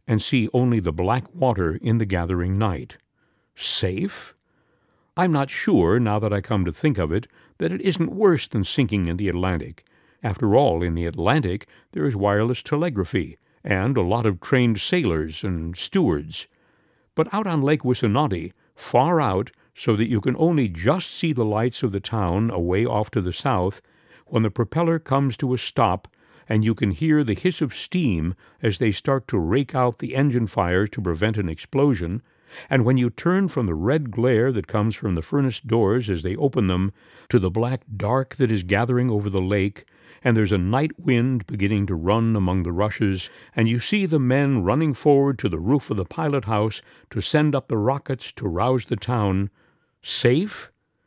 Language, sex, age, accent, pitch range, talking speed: English, male, 60-79, American, 100-135 Hz, 190 wpm